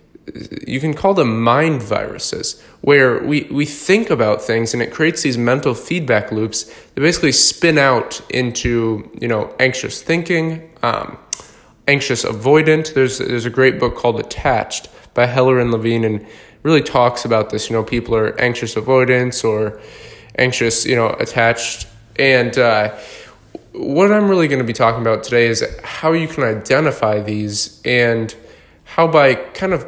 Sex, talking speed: male, 160 wpm